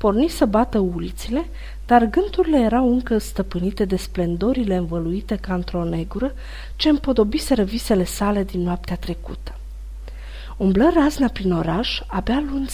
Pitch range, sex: 180-260 Hz, female